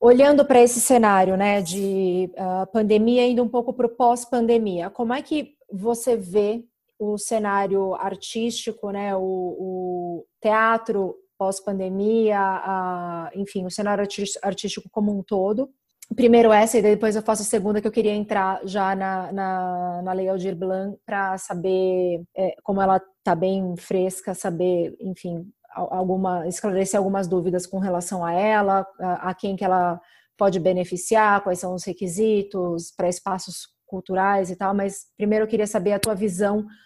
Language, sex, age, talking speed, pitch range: Portuguese, female, 30-49, 155 wpm, 190-220 Hz